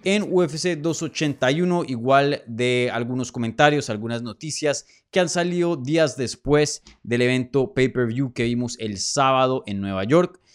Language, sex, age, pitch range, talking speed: Spanish, male, 20-39, 120-160 Hz, 135 wpm